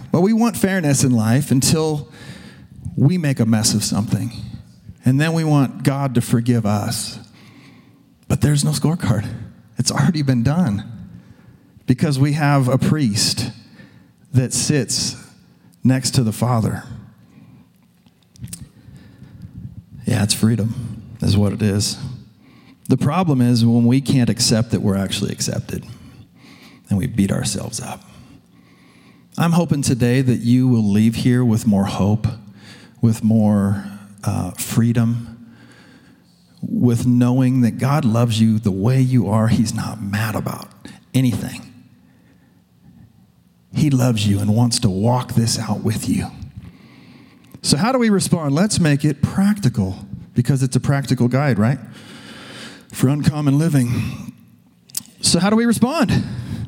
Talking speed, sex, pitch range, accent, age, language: 135 wpm, male, 110-140 Hz, American, 40-59, English